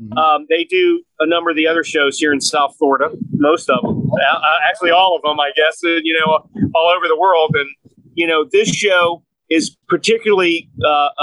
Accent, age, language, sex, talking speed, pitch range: American, 40-59, English, male, 200 wpm, 140-170 Hz